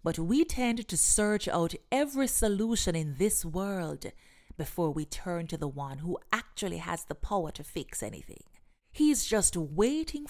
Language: English